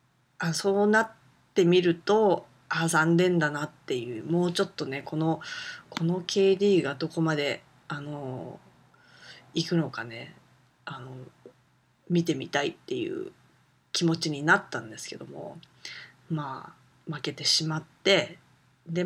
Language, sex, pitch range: Japanese, female, 145-190 Hz